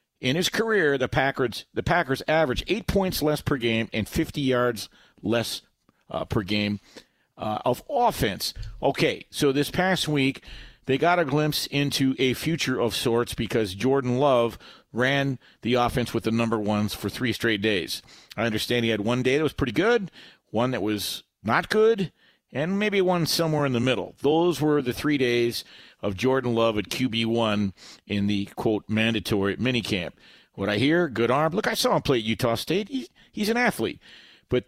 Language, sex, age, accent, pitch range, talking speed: English, male, 50-69, American, 115-150 Hz, 185 wpm